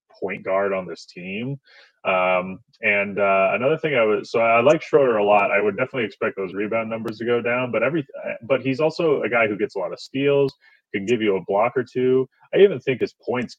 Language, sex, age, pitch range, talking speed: English, male, 20-39, 100-145 Hz, 235 wpm